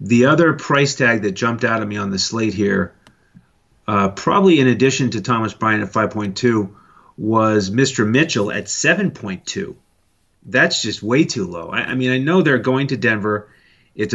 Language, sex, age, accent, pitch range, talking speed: English, male, 30-49, American, 105-135 Hz, 180 wpm